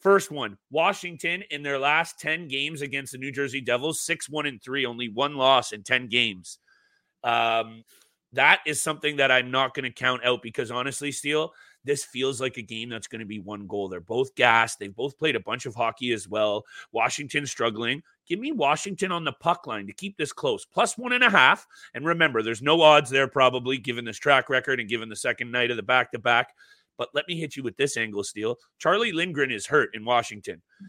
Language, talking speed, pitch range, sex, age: English, 215 wpm, 125-175 Hz, male, 30-49